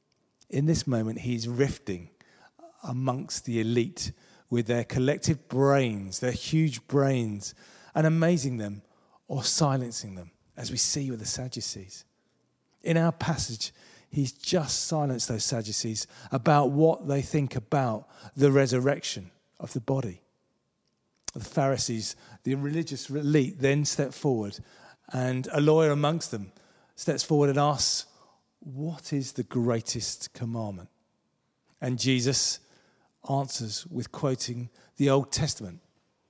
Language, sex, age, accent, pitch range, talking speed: English, male, 40-59, British, 120-150 Hz, 125 wpm